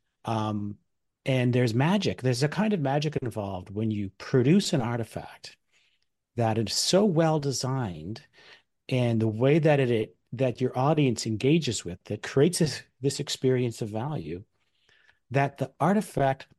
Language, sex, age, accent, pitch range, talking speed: English, male, 40-59, American, 110-155 Hz, 150 wpm